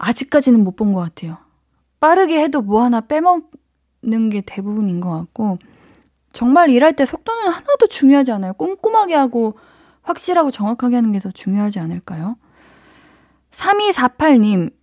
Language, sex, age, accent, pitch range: Korean, female, 20-39, native, 200-285 Hz